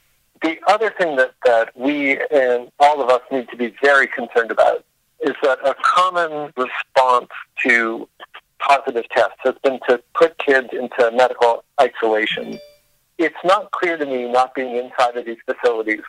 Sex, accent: male, American